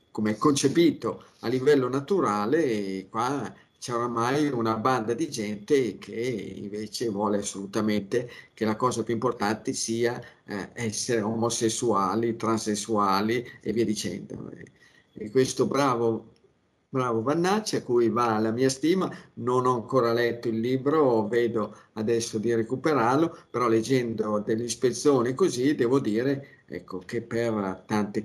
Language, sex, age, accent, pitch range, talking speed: Italian, male, 50-69, native, 110-145 Hz, 130 wpm